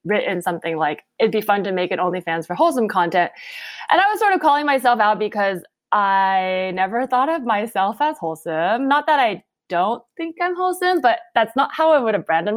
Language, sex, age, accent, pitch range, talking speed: English, female, 20-39, American, 190-270 Hz, 215 wpm